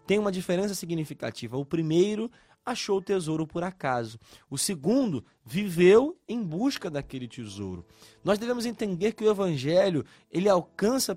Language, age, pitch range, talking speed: Portuguese, 20-39, 155-205 Hz, 140 wpm